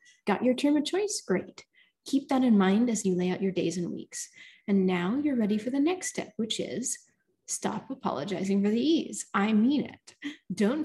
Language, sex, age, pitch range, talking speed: English, female, 20-39, 200-270 Hz, 200 wpm